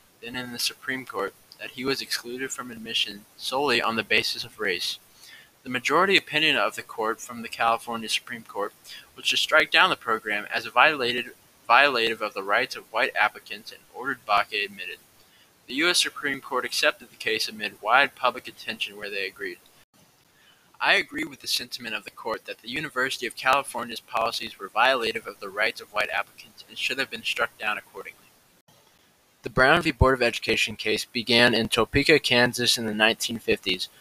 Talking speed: 185 wpm